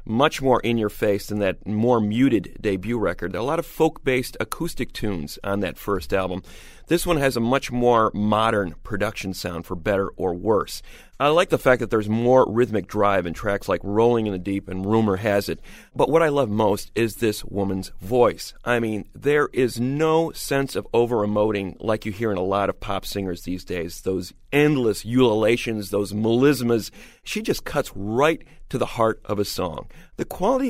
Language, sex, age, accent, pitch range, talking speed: English, male, 40-59, American, 105-150 Hz, 195 wpm